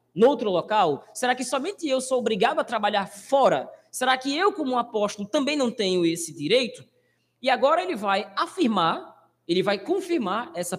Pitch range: 175-280 Hz